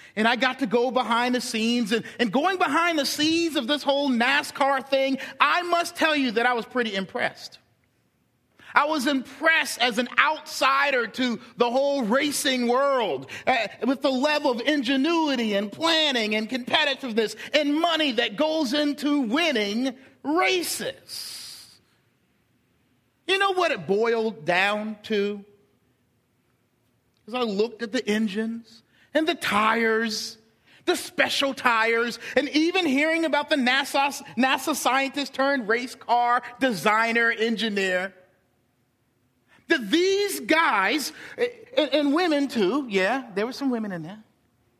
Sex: male